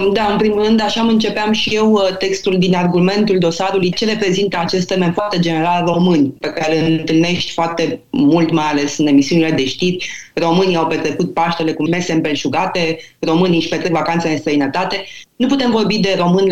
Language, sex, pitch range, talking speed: Romanian, female, 175-210 Hz, 180 wpm